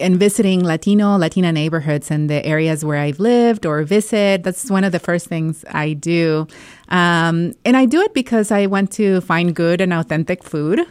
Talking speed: 195 wpm